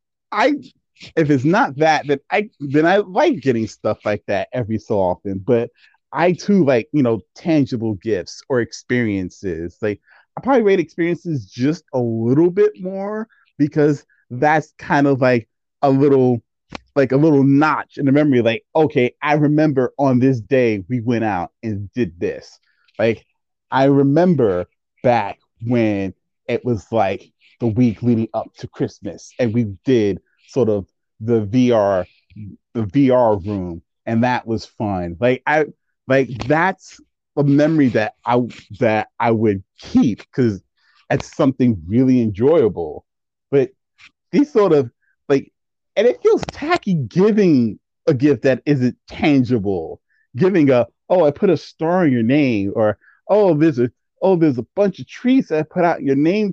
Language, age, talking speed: English, 30-49, 160 wpm